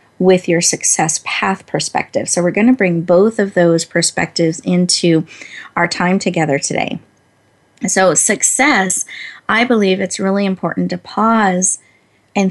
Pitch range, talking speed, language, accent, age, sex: 175-220 Hz, 140 wpm, English, American, 30-49, female